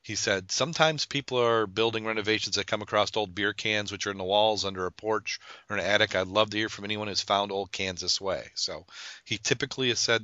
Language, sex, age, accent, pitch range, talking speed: English, male, 40-59, American, 90-110 Hz, 245 wpm